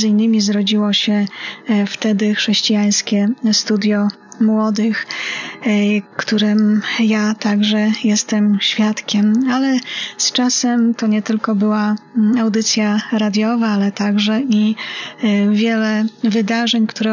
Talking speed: 95 wpm